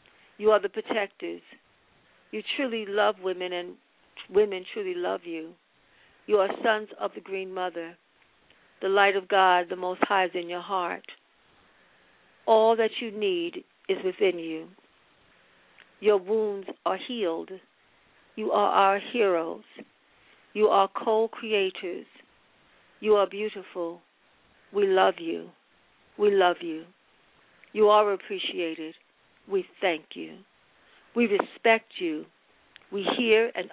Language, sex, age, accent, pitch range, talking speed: English, female, 50-69, American, 180-220 Hz, 125 wpm